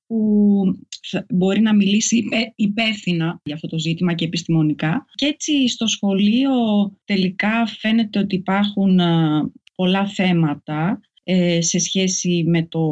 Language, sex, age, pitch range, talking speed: Greek, female, 30-49, 165-220 Hz, 110 wpm